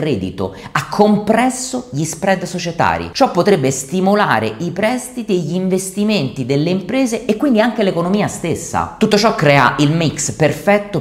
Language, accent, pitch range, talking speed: Italian, native, 130-195 Hz, 145 wpm